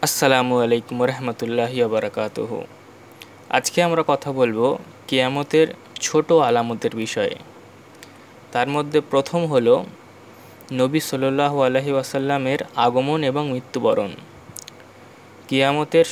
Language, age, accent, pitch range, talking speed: Bengali, 20-39, native, 125-145 Hz, 85 wpm